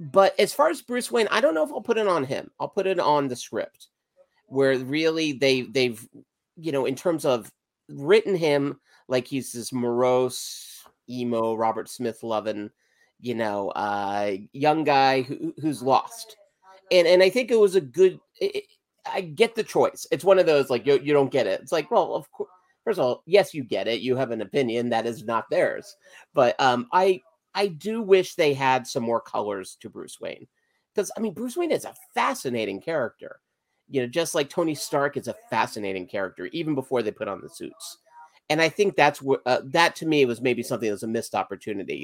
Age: 30-49